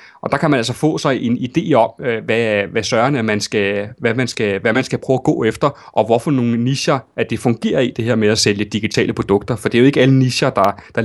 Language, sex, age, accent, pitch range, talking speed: Danish, male, 30-49, native, 110-140 Hz, 265 wpm